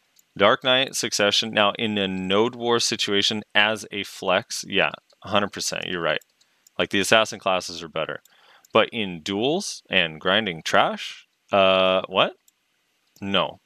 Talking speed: 135 wpm